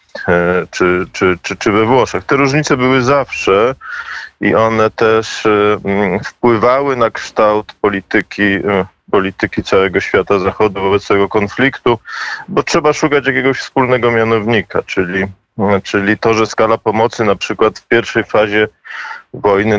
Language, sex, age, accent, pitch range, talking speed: Polish, male, 20-39, native, 105-130 Hz, 125 wpm